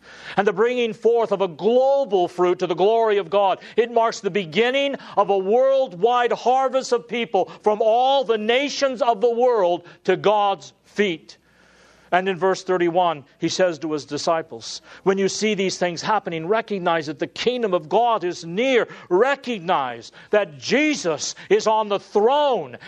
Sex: male